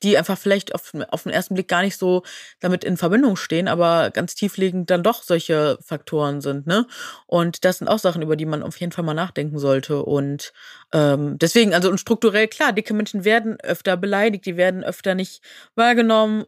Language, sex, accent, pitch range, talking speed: German, female, German, 165-205 Hz, 200 wpm